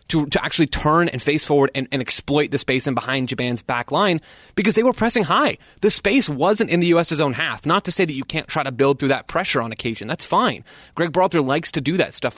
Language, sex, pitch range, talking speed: English, male, 130-170 Hz, 255 wpm